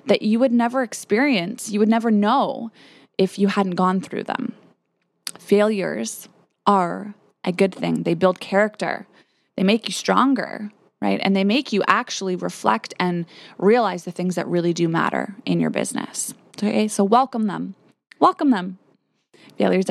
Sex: female